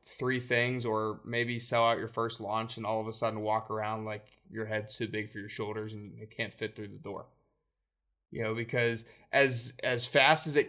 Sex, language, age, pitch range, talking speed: male, English, 20-39, 105-125 Hz, 220 wpm